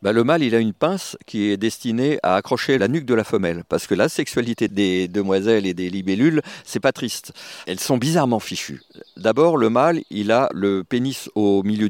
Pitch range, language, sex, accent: 100-135 Hz, French, male, French